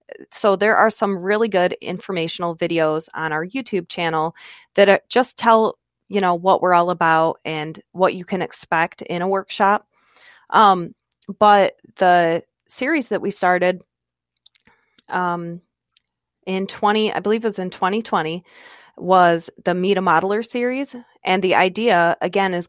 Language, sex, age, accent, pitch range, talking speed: English, female, 20-39, American, 170-200 Hz, 155 wpm